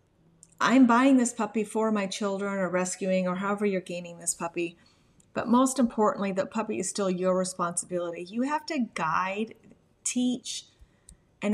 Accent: American